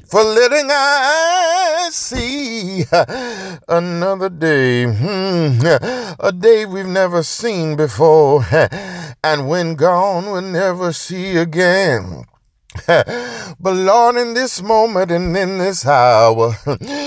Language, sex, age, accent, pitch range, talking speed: English, male, 50-69, American, 160-250 Hz, 100 wpm